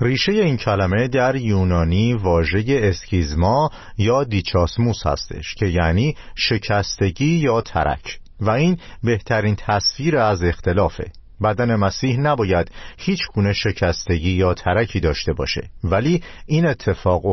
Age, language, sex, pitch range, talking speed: 50-69, Persian, male, 90-125 Hz, 120 wpm